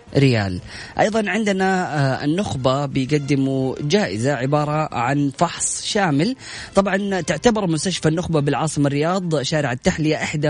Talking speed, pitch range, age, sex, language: 110 wpm, 130-155 Hz, 20-39, female, Arabic